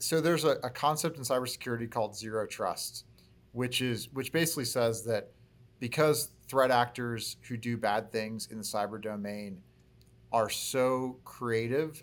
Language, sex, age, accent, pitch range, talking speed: English, male, 40-59, American, 110-130 Hz, 150 wpm